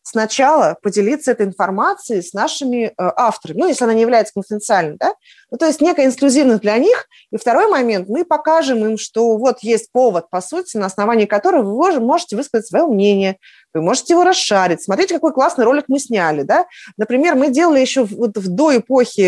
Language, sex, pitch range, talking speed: Russian, female, 190-255 Hz, 195 wpm